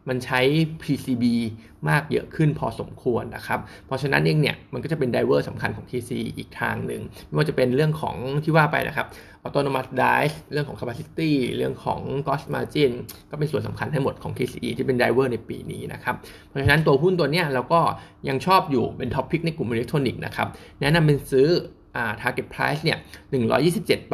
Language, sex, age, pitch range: Thai, male, 20-39, 120-150 Hz